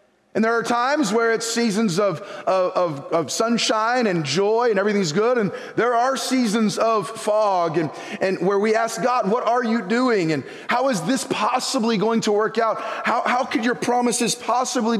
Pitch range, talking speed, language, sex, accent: 190-240 Hz, 190 wpm, English, male, American